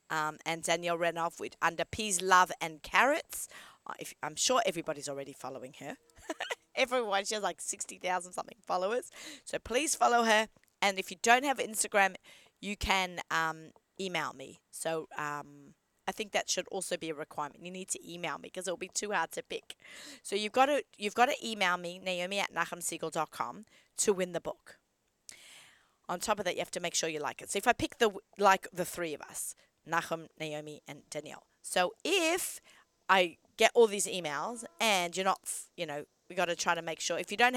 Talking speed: 195 wpm